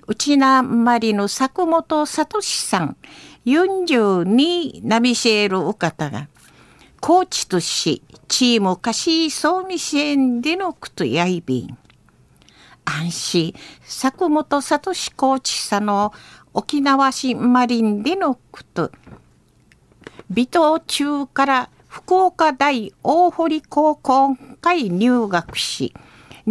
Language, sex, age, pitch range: Japanese, female, 50-69, 220-305 Hz